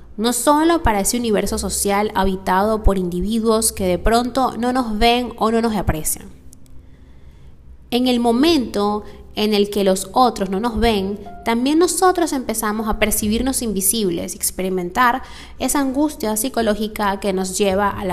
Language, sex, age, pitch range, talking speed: Spanish, female, 20-39, 180-245 Hz, 145 wpm